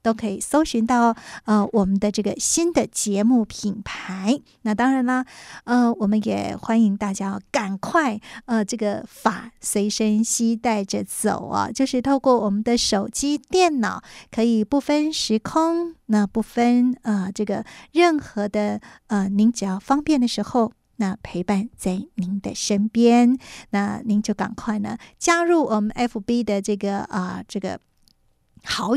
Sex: female